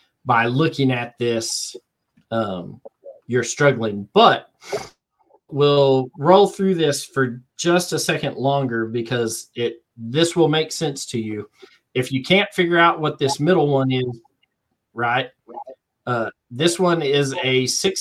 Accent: American